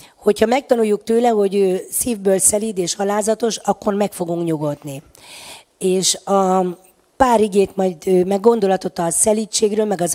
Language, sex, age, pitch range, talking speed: Hungarian, female, 40-59, 175-210 Hz, 140 wpm